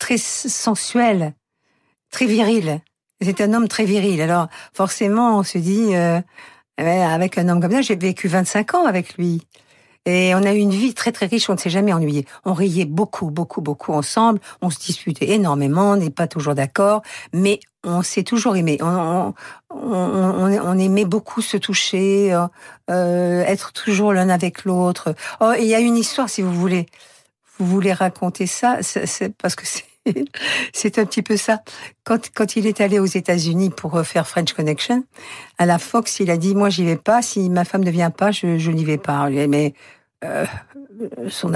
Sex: female